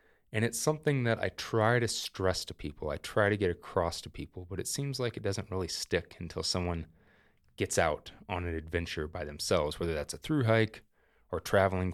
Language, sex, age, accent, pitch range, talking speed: English, male, 20-39, American, 80-105 Hz, 200 wpm